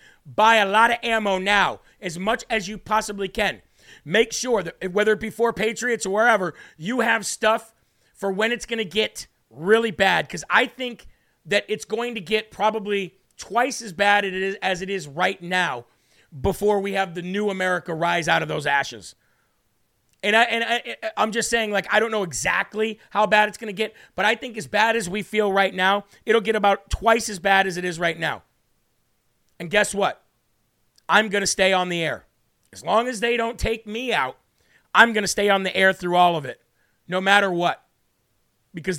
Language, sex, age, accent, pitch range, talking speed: English, male, 40-59, American, 180-220 Hz, 200 wpm